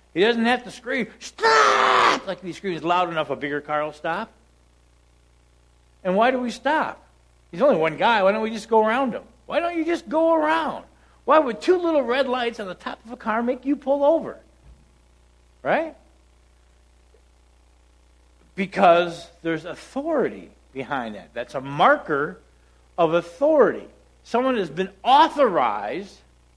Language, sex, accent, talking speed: English, male, American, 160 wpm